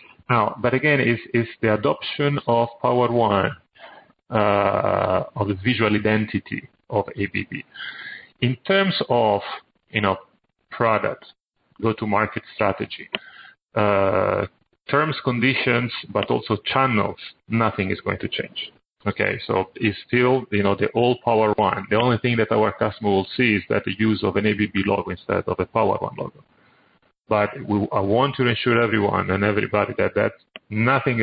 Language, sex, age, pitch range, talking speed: English, male, 30-49, 105-120 Hz, 155 wpm